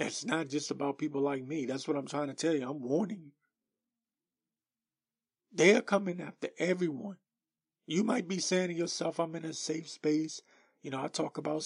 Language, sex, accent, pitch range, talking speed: English, male, American, 140-190 Hz, 190 wpm